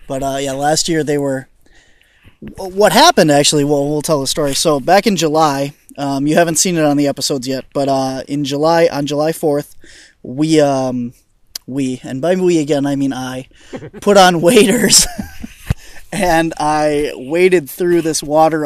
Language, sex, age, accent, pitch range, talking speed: English, male, 20-39, American, 135-165 Hz, 175 wpm